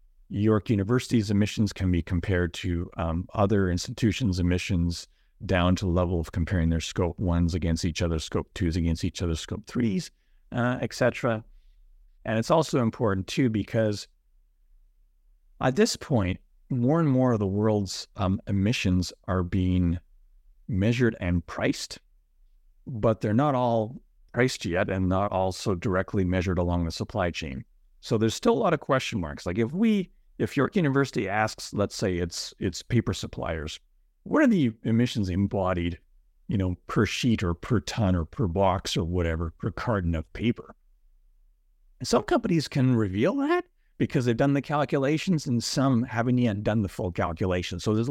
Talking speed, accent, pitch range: 165 wpm, American, 90-125 Hz